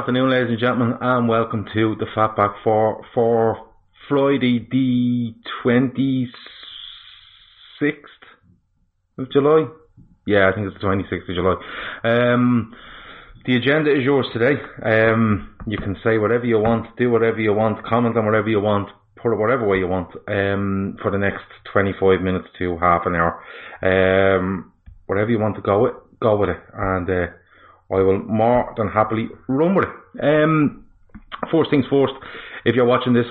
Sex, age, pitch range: male, 30-49, 100-120 Hz